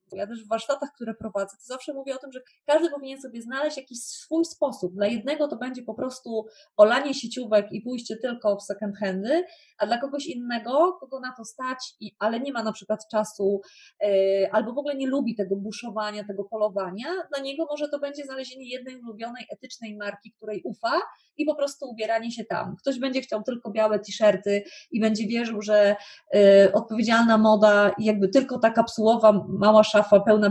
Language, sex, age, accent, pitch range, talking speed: Polish, female, 20-39, native, 205-265 Hz, 185 wpm